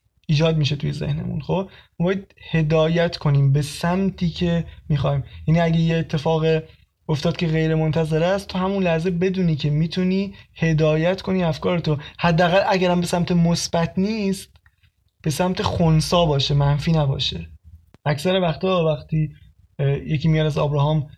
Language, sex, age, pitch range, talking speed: Persian, male, 20-39, 145-175 Hz, 135 wpm